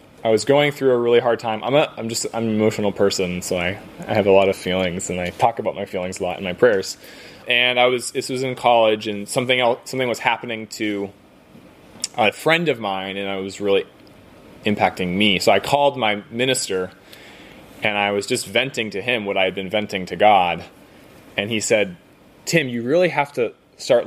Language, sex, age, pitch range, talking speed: English, male, 20-39, 100-125 Hz, 215 wpm